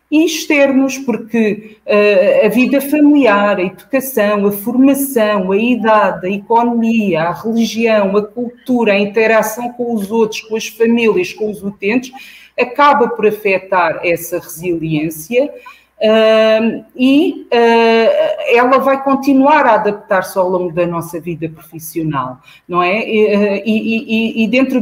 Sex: female